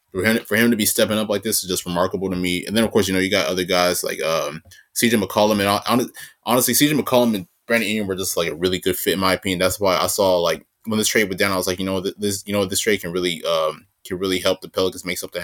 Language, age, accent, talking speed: English, 20-39, American, 290 wpm